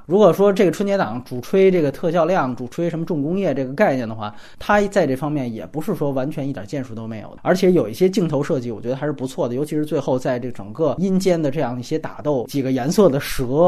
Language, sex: Chinese, male